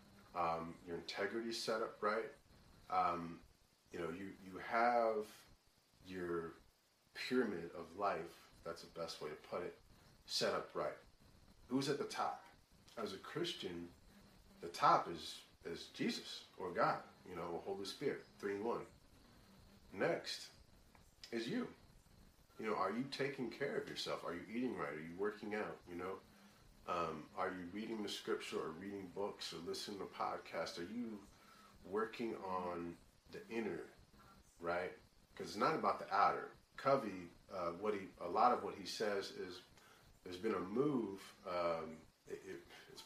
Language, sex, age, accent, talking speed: English, male, 30-49, American, 160 wpm